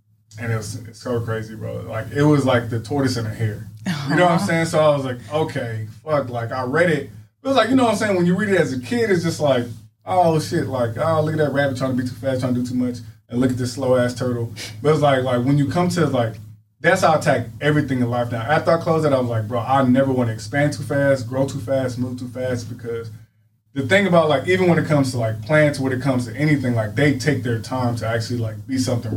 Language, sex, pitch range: English, male, 115-140 Hz